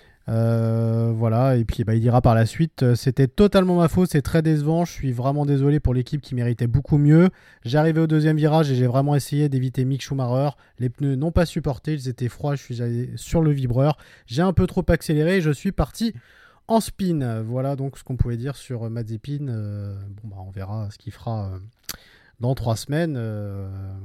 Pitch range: 115-160 Hz